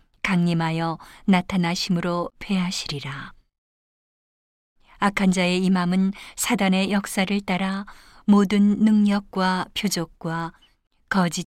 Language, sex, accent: Korean, female, native